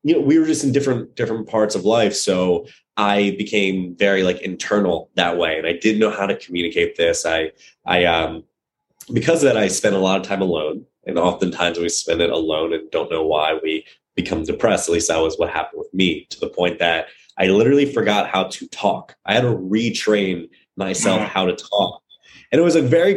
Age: 20-39